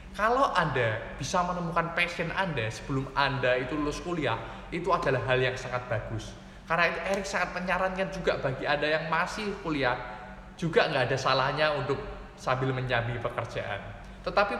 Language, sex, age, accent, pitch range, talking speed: Indonesian, male, 20-39, native, 130-175 Hz, 150 wpm